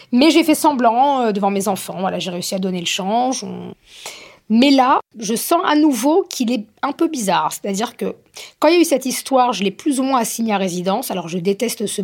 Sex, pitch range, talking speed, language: female, 195-255 Hz, 230 wpm, French